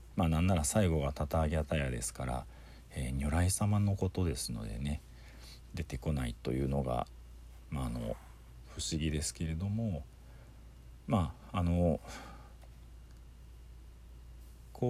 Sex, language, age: male, Japanese, 40-59